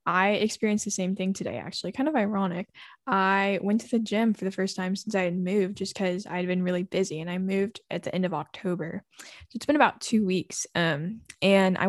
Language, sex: English, female